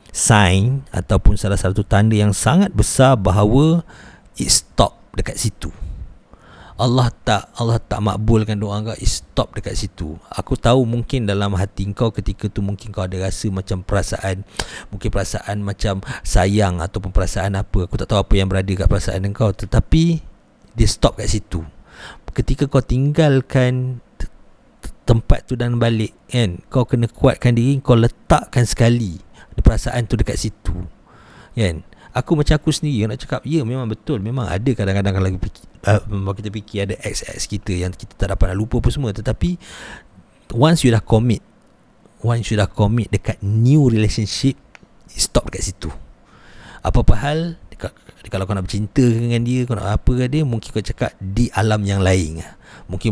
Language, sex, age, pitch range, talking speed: Malay, male, 50-69, 95-120 Hz, 165 wpm